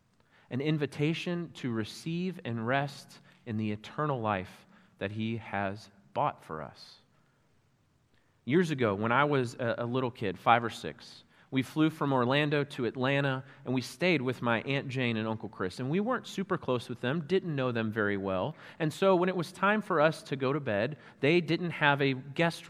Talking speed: 190 wpm